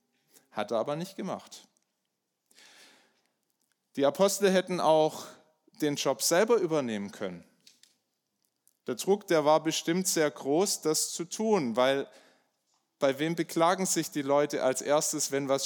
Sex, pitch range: male, 130-175 Hz